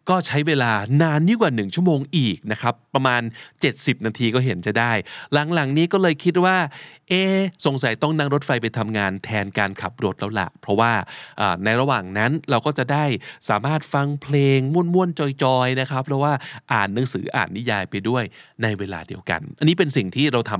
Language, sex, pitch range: Thai, male, 105-145 Hz